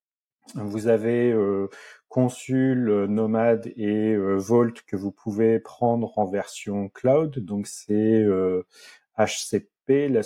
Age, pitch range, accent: 30-49, 100-120 Hz, French